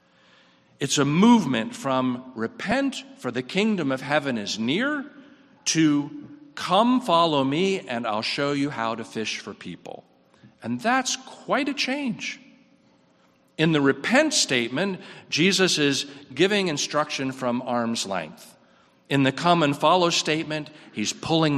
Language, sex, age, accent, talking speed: English, male, 50-69, American, 135 wpm